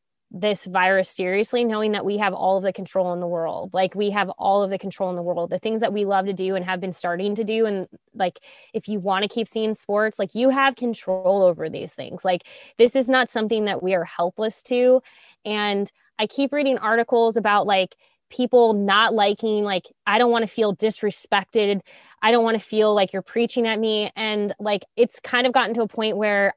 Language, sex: English, female